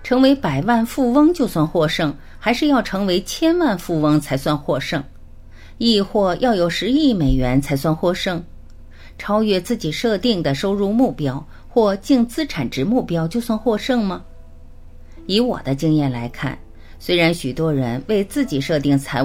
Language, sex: Chinese, female